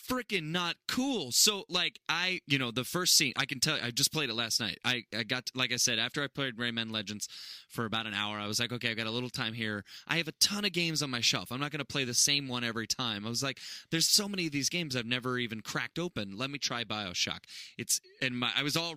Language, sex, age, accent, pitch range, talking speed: English, male, 20-39, American, 115-145 Hz, 280 wpm